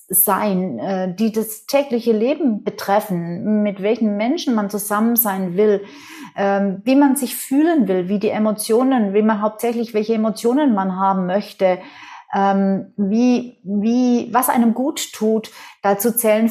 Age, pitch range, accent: 40-59, 195-245 Hz, German